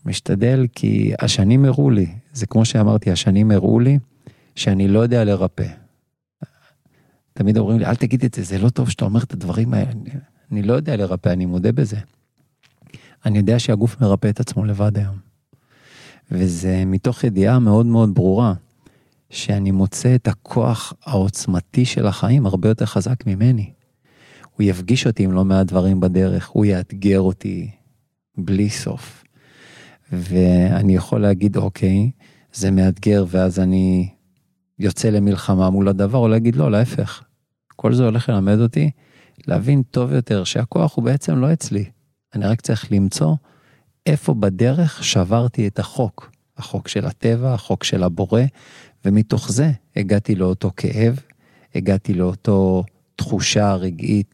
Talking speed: 145 wpm